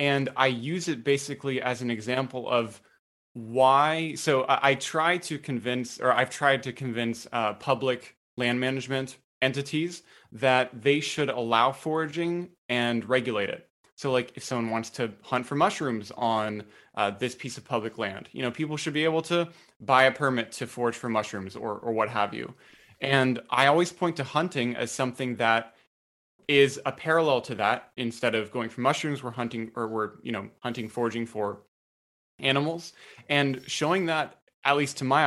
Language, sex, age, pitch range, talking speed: English, male, 20-39, 120-145 Hz, 180 wpm